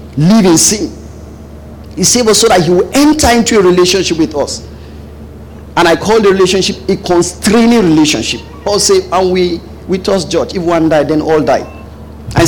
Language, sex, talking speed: English, male, 180 wpm